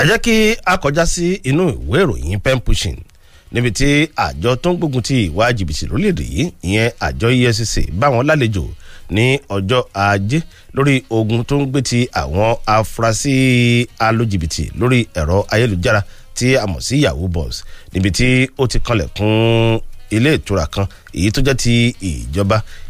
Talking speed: 115 wpm